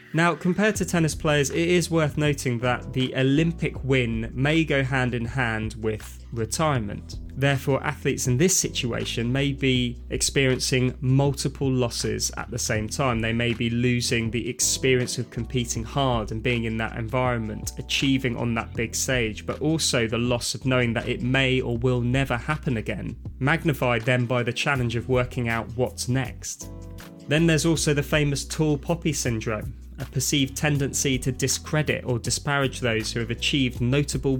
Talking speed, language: 165 wpm, English